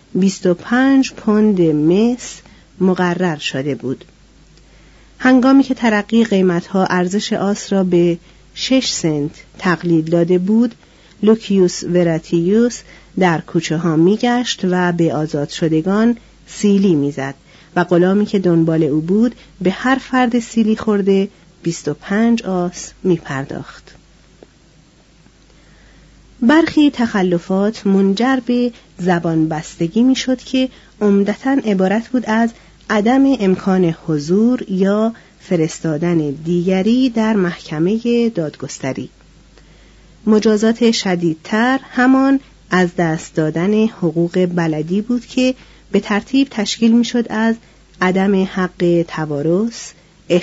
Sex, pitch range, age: female, 170-225 Hz, 40-59